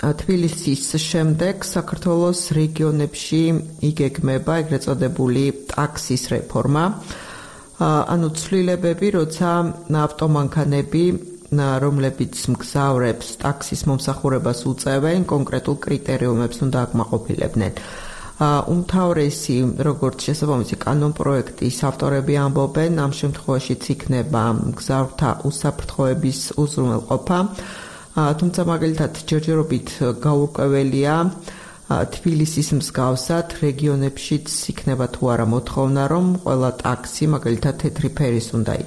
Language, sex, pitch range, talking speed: Arabic, female, 130-160 Hz, 70 wpm